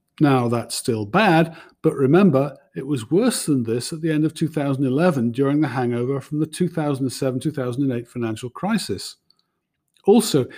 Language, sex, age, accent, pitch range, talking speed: English, male, 50-69, British, 130-170 Hz, 140 wpm